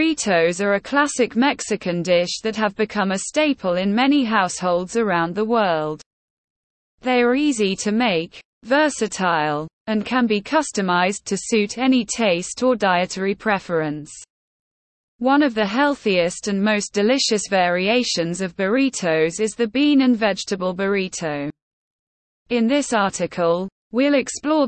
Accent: British